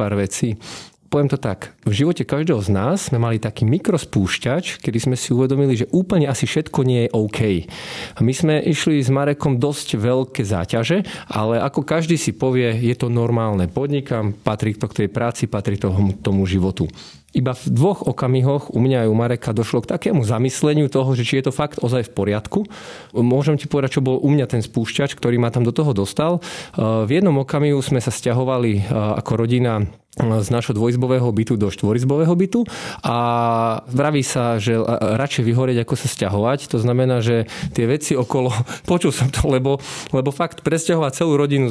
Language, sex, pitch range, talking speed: Slovak, male, 115-145 Hz, 180 wpm